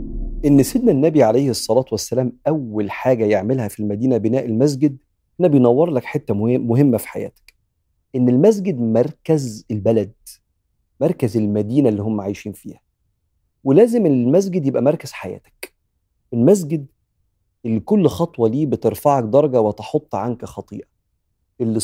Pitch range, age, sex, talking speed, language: 105-140 Hz, 40-59, male, 125 wpm, Arabic